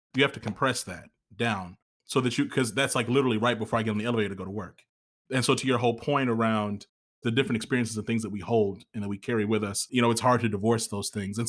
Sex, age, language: male, 30-49, English